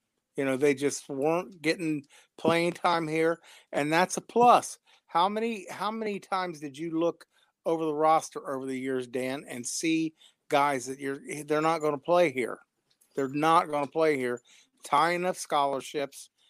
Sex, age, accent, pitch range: male, 50-69, American, 145-175 Hz